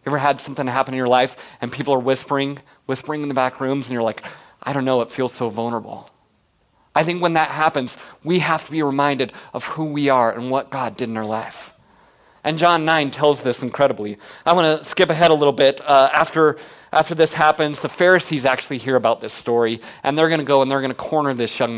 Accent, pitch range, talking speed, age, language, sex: American, 130-165 Hz, 235 wpm, 30-49, English, male